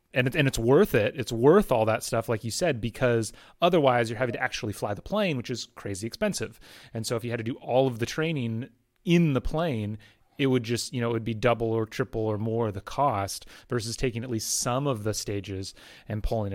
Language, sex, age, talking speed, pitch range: English, male, 30-49, 230 wpm, 110-135 Hz